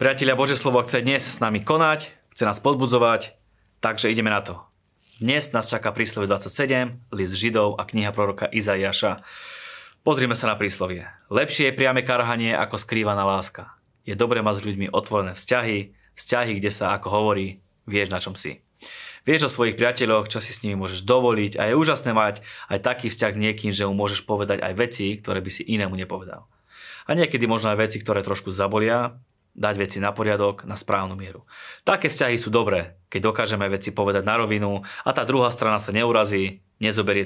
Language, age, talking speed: Slovak, 20-39, 185 wpm